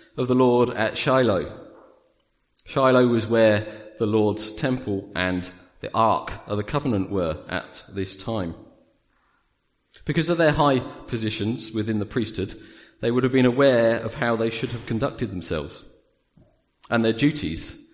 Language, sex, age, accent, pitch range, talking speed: English, male, 40-59, British, 100-125 Hz, 145 wpm